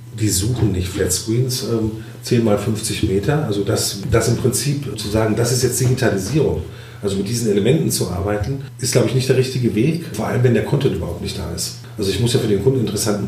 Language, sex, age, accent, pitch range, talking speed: German, male, 40-59, German, 100-125 Hz, 225 wpm